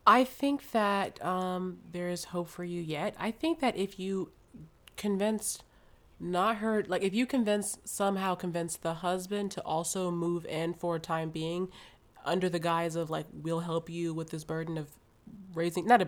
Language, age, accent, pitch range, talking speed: English, 20-39, American, 165-200 Hz, 185 wpm